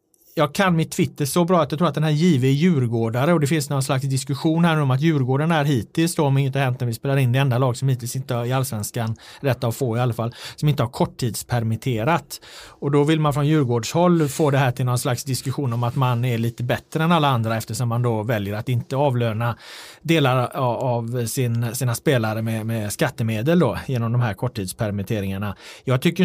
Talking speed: 225 wpm